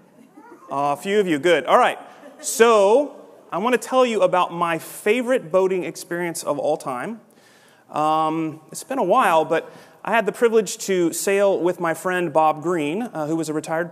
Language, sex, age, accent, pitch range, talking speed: English, male, 30-49, American, 145-190 Hz, 185 wpm